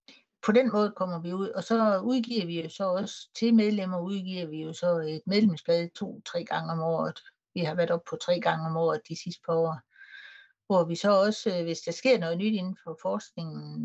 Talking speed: 215 wpm